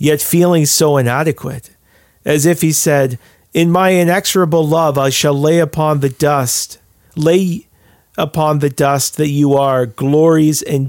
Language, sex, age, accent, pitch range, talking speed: English, male, 40-59, American, 125-155 Hz, 150 wpm